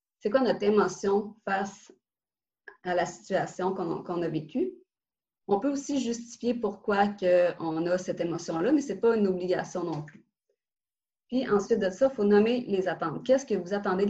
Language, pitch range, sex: French, 180-220 Hz, female